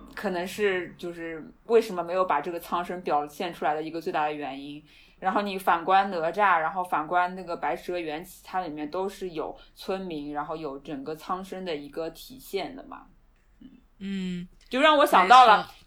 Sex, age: female, 20-39